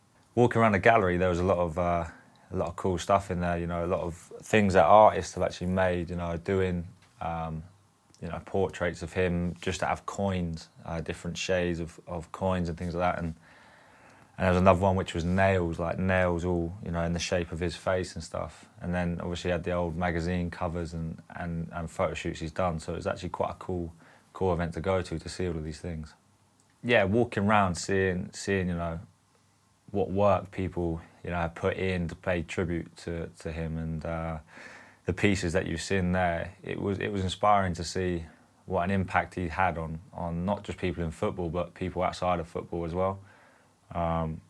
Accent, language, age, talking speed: British, English, 20-39, 220 wpm